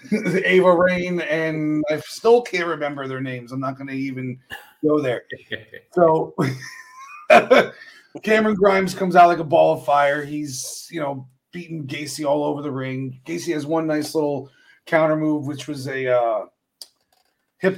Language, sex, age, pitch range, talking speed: English, male, 30-49, 145-185 Hz, 160 wpm